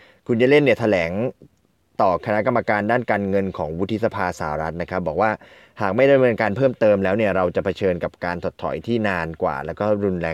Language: Thai